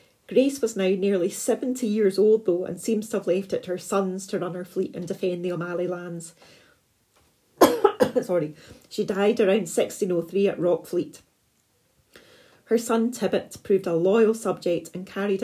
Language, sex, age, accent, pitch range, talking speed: English, female, 30-49, British, 175-205 Hz, 165 wpm